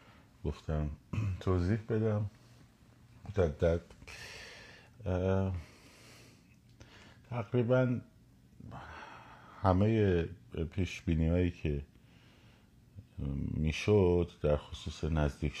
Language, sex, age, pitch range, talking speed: Persian, male, 50-69, 75-100 Hz, 60 wpm